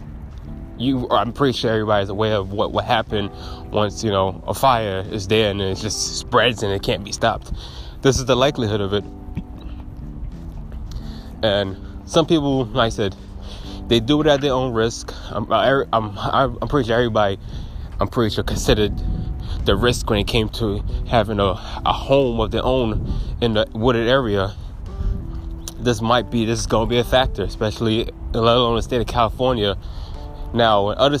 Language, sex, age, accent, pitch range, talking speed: English, male, 20-39, American, 90-120 Hz, 175 wpm